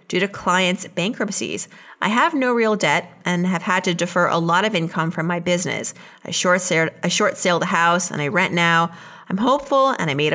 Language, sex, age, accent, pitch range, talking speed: English, female, 30-49, American, 175-215 Hz, 220 wpm